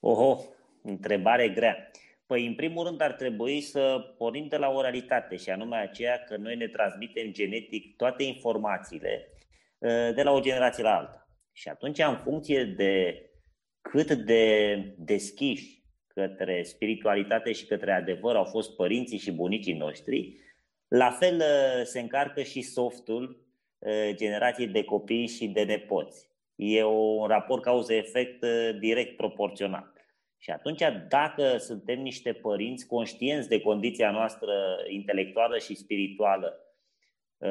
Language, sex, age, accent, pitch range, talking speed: Romanian, male, 30-49, native, 105-135 Hz, 130 wpm